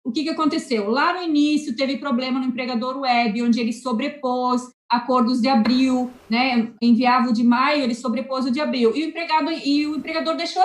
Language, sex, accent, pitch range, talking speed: Portuguese, female, Brazilian, 245-300 Hz, 195 wpm